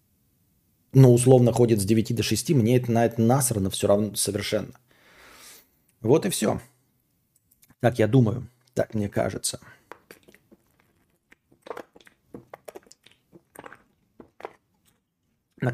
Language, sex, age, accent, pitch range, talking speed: Russian, male, 40-59, native, 110-145 Hz, 95 wpm